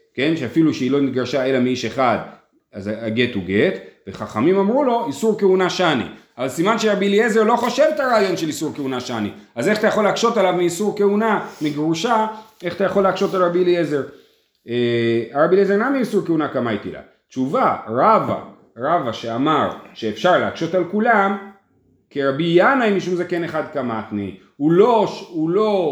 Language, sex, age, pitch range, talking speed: Hebrew, male, 30-49, 130-200 Hz, 170 wpm